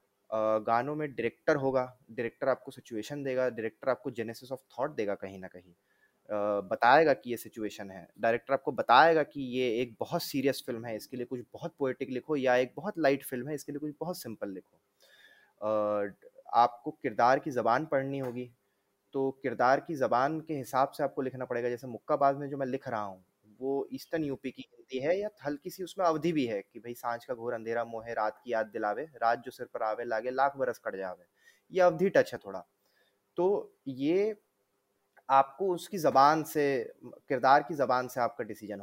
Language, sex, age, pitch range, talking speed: Hindi, male, 20-39, 115-150 Hz, 175 wpm